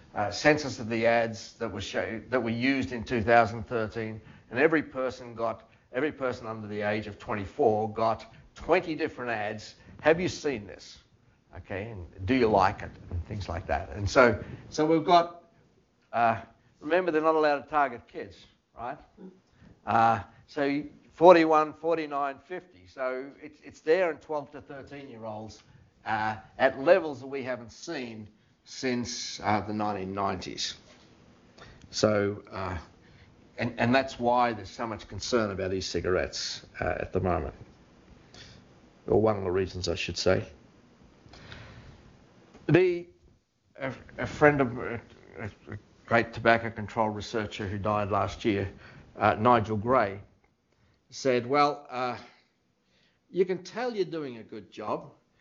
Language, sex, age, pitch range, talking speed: English, male, 50-69, 105-135 Hz, 145 wpm